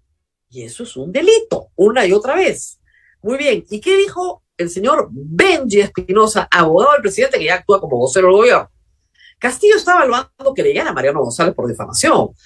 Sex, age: female, 50-69